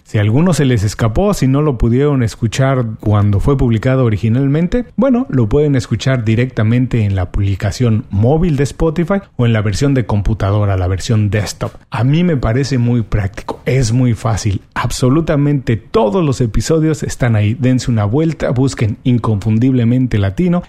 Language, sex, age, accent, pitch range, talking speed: Spanish, male, 40-59, Mexican, 110-150 Hz, 160 wpm